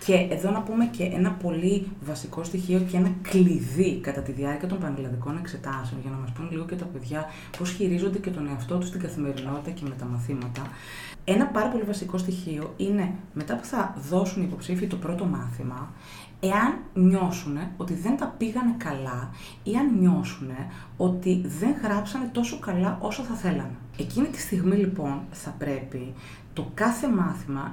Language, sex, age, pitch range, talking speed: Greek, female, 30-49, 140-195 Hz, 175 wpm